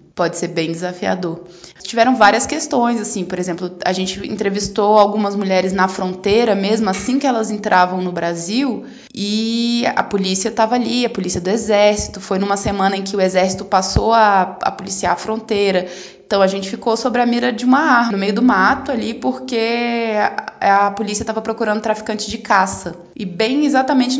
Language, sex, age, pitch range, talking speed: Portuguese, female, 20-39, 200-245 Hz, 180 wpm